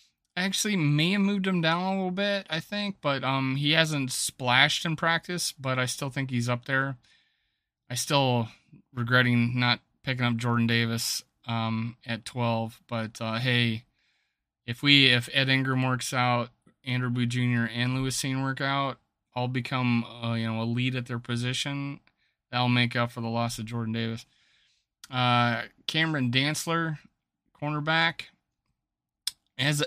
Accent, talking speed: American, 155 wpm